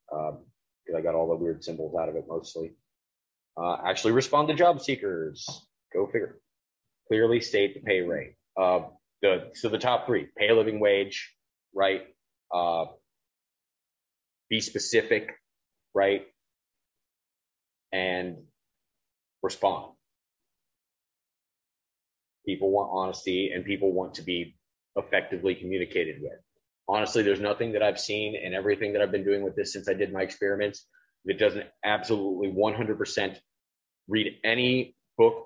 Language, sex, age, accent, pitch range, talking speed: English, male, 30-49, American, 95-125 Hz, 135 wpm